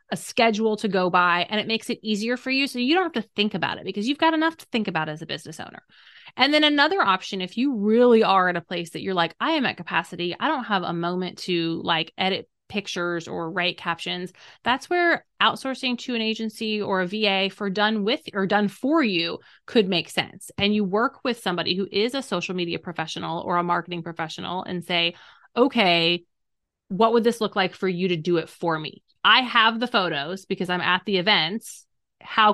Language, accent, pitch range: English, American, 175-225 Hz